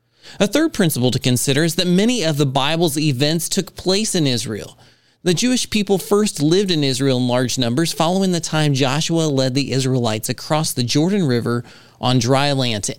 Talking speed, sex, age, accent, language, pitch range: 190 wpm, male, 30-49, American, English, 130-165 Hz